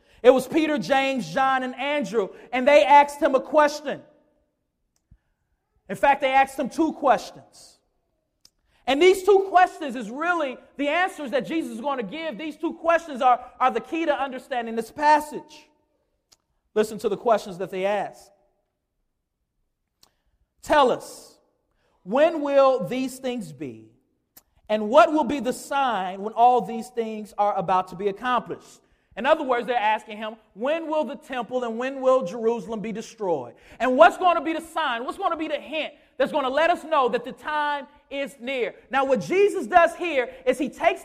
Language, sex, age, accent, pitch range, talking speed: English, male, 40-59, American, 250-320 Hz, 180 wpm